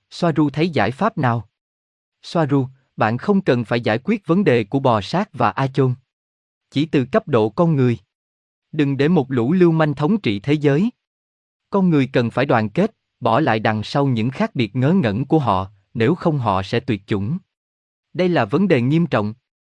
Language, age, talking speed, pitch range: Vietnamese, 20-39, 195 wpm, 110-155 Hz